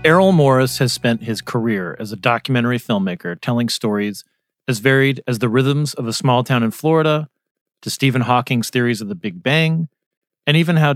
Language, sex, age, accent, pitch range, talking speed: English, male, 40-59, American, 115-140 Hz, 185 wpm